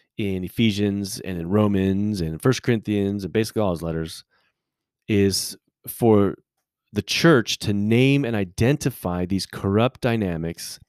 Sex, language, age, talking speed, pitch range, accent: male, English, 30-49, 130 wpm, 95-125 Hz, American